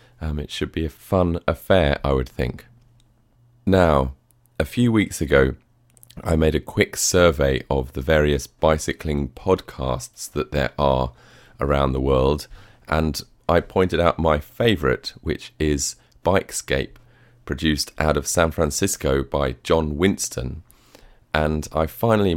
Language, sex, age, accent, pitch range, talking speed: English, male, 40-59, British, 70-90 Hz, 135 wpm